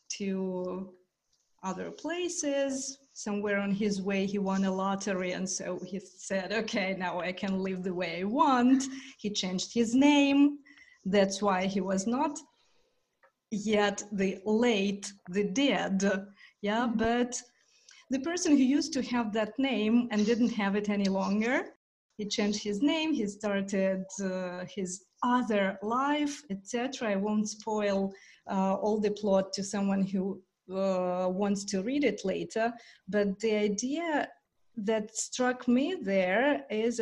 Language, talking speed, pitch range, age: English, 145 wpm, 195-250 Hz, 30-49